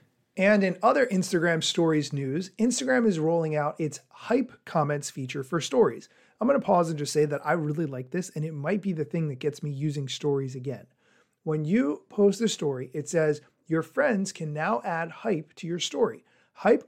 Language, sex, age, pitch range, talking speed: English, male, 40-59, 150-205 Hz, 205 wpm